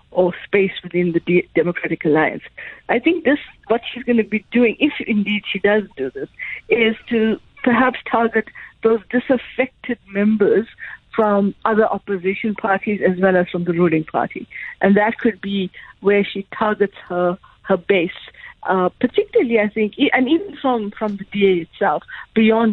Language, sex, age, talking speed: English, female, 50-69, 160 wpm